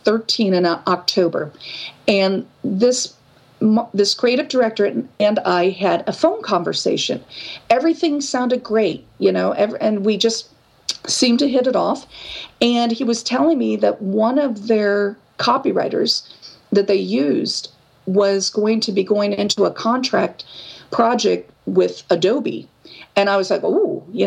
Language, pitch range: English, 200-240 Hz